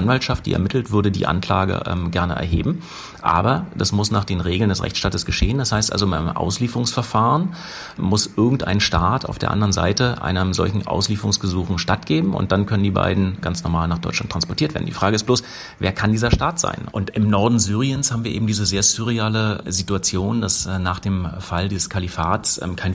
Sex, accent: male, German